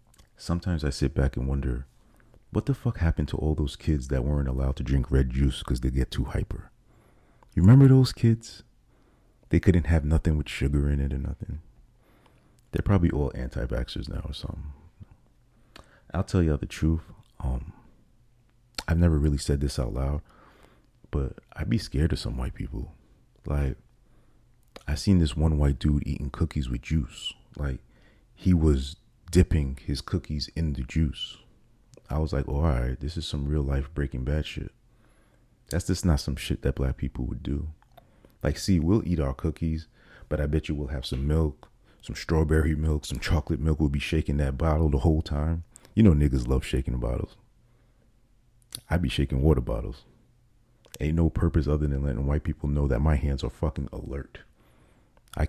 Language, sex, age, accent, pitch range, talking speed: English, male, 30-49, American, 70-90 Hz, 180 wpm